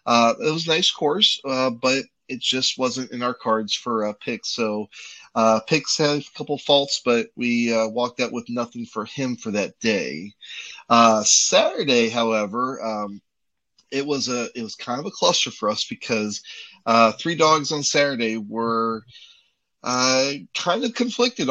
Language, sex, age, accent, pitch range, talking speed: English, male, 30-49, American, 115-145 Hz, 175 wpm